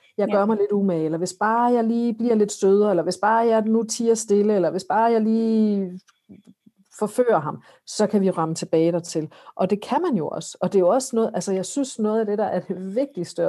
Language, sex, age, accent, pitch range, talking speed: Danish, female, 50-69, native, 175-210 Hz, 245 wpm